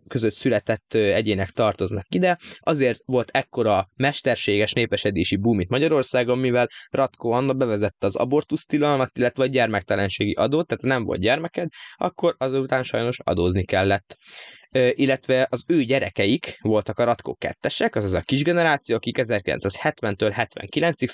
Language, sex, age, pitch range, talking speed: Hungarian, male, 20-39, 105-135 Hz, 135 wpm